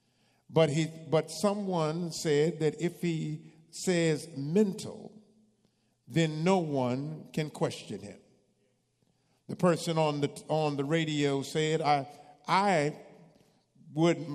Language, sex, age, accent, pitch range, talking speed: English, male, 50-69, American, 145-175 Hz, 115 wpm